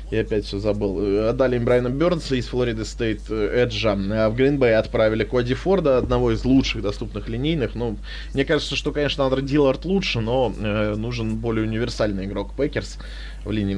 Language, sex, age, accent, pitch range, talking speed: Russian, male, 20-39, native, 100-125 Hz, 170 wpm